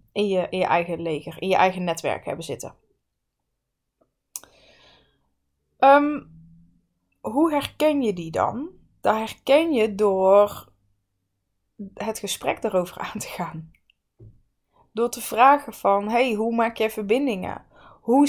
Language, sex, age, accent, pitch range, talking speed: Dutch, female, 20-39, Dutch, 180-225 Hz, 130 wpm